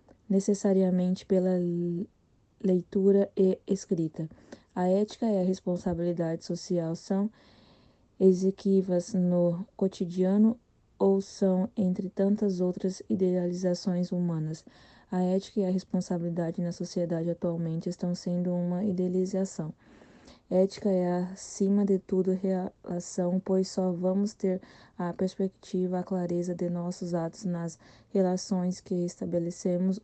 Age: 20-39